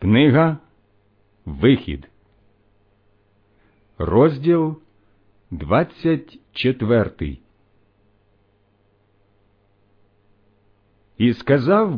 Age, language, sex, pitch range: 50-69, Ukrainian, male, 100-155 Hz